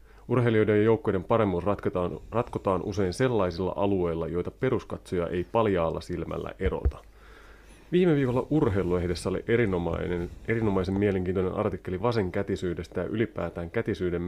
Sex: male